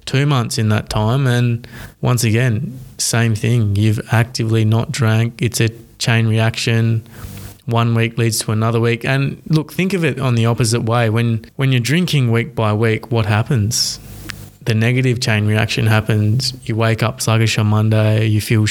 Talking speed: 175 wpm